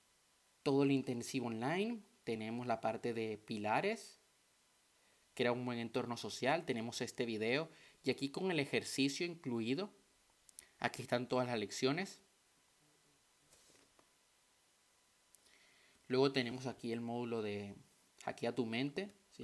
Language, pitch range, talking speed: Spanish, 115-140 Hz, 120 wpm